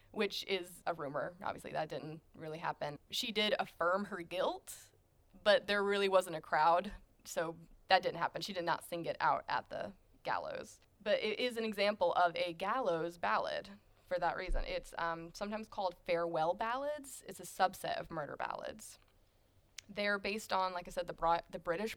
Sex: female